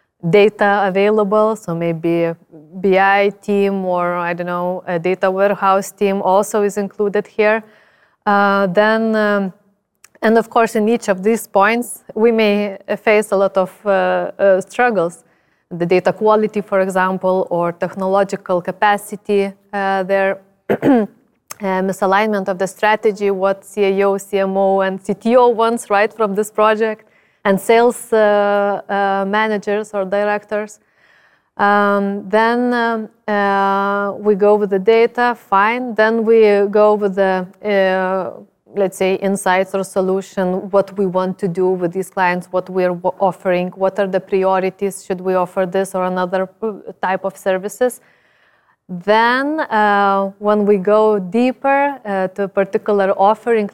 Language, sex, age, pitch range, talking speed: English, female, 20-39, 190-215 Hz, 145 wpm